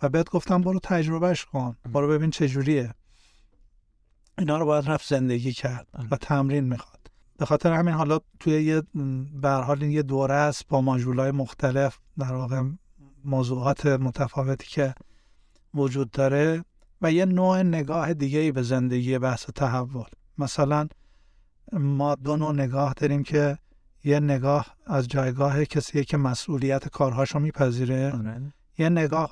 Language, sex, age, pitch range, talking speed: Persian, male, 50-69, 130-150 Hz, 140 wpm